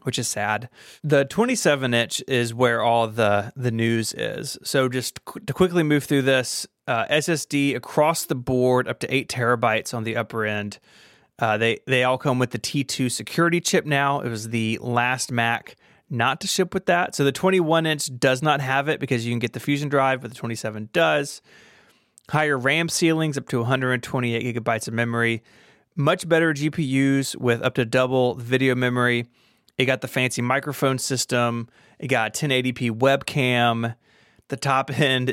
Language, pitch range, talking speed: English, 120-150 Hz, 175 wpm